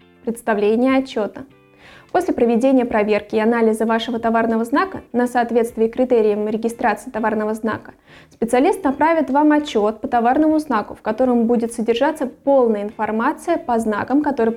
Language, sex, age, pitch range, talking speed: Russian, female, 20-39, 225-270 Hz, 130 wpm